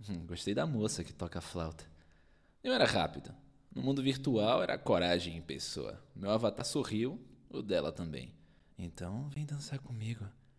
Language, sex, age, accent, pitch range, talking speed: Portuguese, male, 20-39, Brazilian, 85-120 Hz, 145 wpm